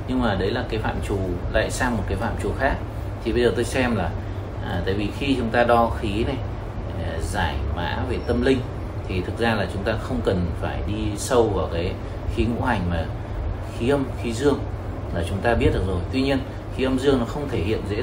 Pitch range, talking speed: 95-115 Hz, 235 wpm